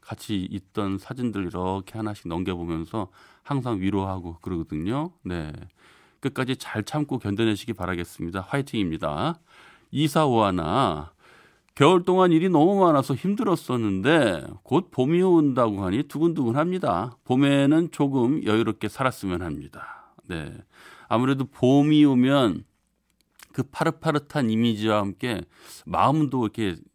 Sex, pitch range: male, 100-150 Hz